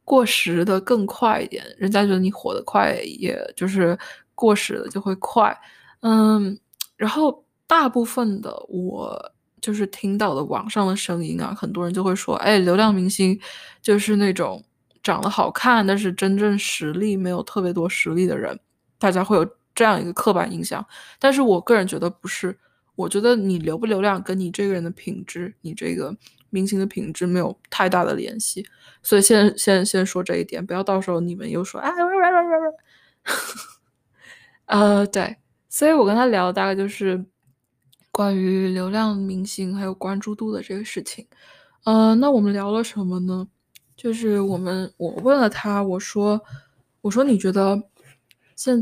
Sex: female